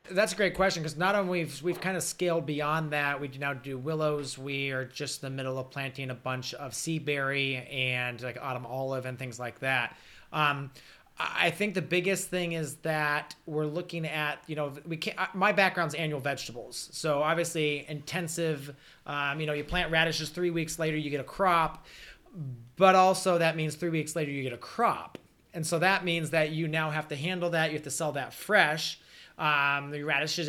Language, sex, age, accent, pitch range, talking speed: English, male, 30-49, American, 135-165 Hz, 210 wpm